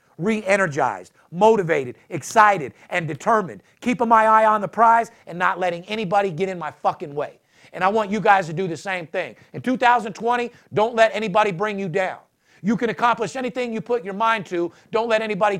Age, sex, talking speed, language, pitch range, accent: 50-69, male, 190 wpm, English, 195-235 Hz, American